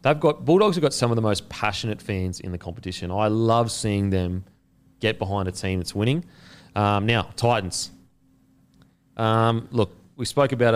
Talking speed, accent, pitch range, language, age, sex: 180 wpm, Australian, 100-125 Hz, English, 30-49, male